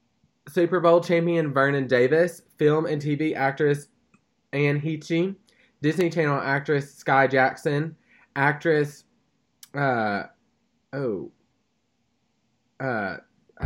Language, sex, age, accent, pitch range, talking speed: English, male, 20-39, American, 120-150 Hz, 80 wpm